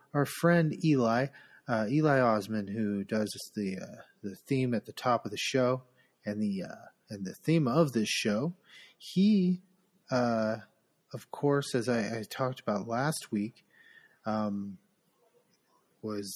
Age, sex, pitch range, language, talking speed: 30-49, male, 105-135 Hz, English, 145 wpm